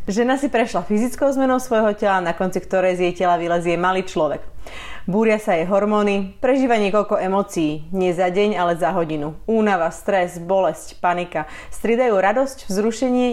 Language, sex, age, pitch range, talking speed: Slovak, female, 30-49, 180-225 Hz, 160 wpm